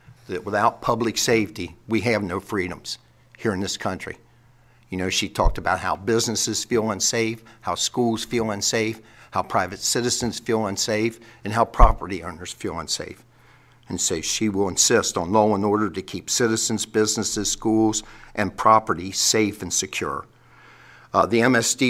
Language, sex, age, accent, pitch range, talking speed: English, male, 50-69, American, 100-120 Hz, 160 wpm